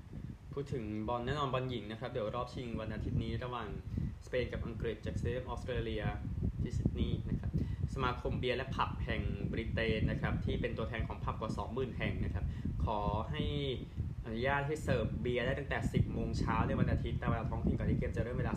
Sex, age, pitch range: male, 20-39, 105-125 Hz